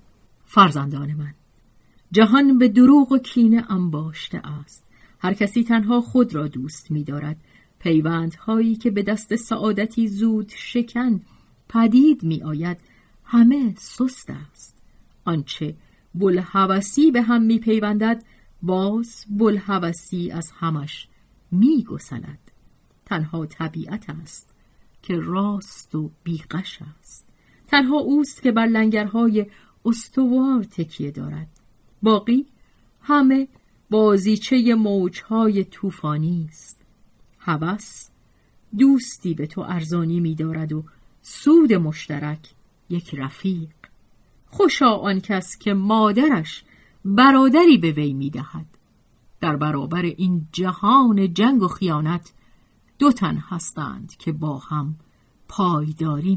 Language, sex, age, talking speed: Persian, female, 40-59, 105 wpm